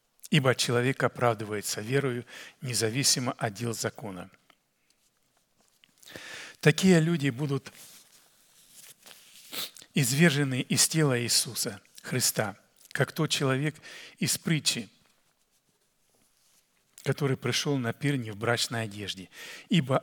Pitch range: 115-140 Hz